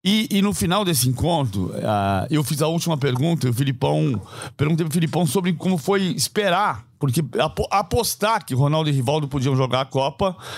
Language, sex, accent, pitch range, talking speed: Portuguese, male, Brazilian, 125-190 Hz, 175 wpm